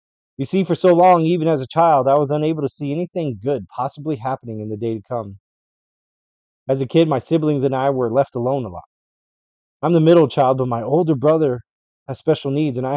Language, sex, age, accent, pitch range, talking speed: English, male, 20-39, American, 120-155 Hz, 220 wpm